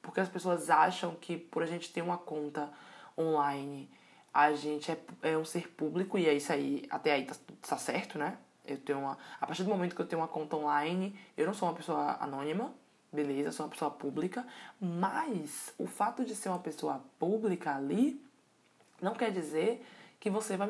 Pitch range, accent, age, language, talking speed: 145-195 Hz, Brazilian, 20-39, Portuguese, 195 wpm